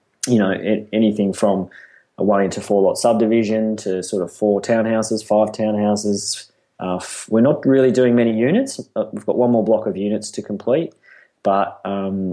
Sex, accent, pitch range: male, Australian, 95-110 Hz